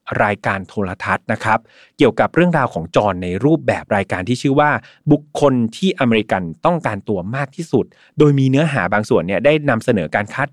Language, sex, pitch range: Thai, male, 110-145 Hz